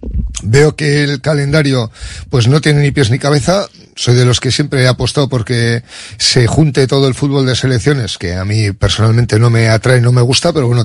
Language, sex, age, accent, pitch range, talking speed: Spanish, male, 40-59, Spanish, 125-150 Hz, 210 wpm